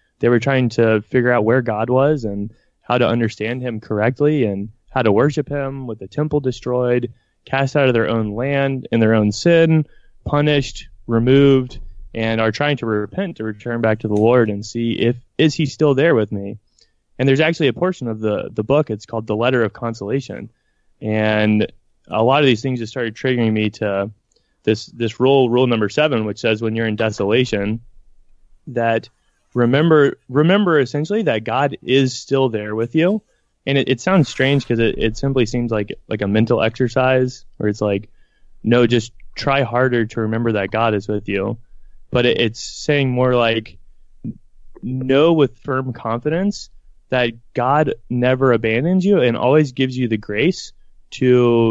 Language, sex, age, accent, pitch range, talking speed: English, male, 20-39, American, 110-135 Hz, 180 wpm